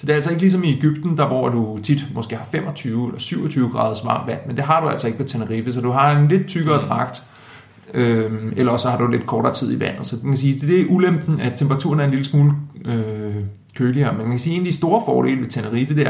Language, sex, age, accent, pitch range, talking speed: Danish, male, 30-49, native, 115-150 Hz, 265 wpm